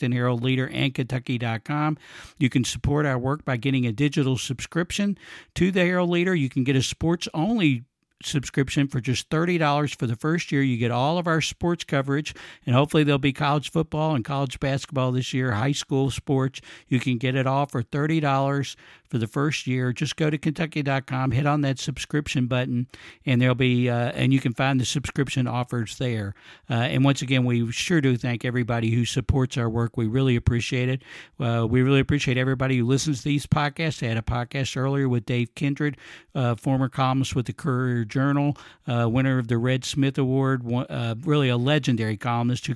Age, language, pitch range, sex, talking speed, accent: 60-79, English, 120-140 Hz, male, 200 wpm, American